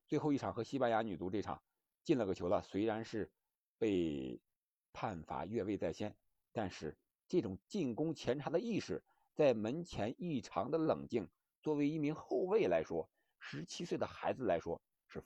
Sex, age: male, 50-69